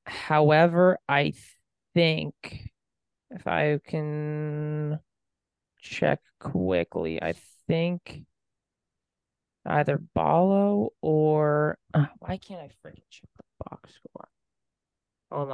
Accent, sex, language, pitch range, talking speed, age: American, male, English, 130-160 Hz, 90 wpm, 20-39